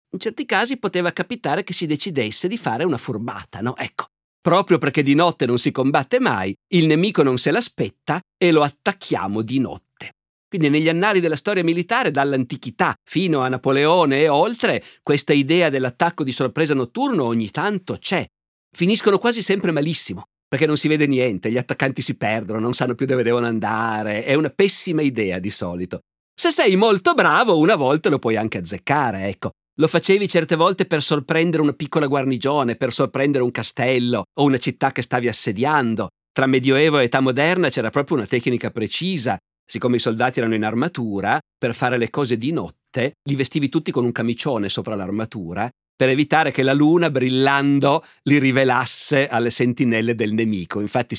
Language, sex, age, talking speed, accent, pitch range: Italian, male, 50-69, 175 wpm, native, 115-155 Hz